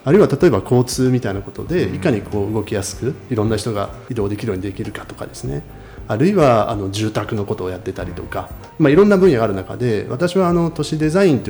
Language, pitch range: Japanese, 105-145 Hz